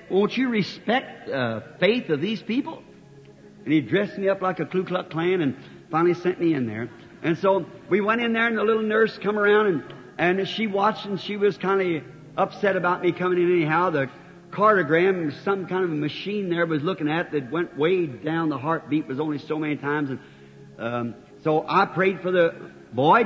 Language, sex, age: English, male, 60-79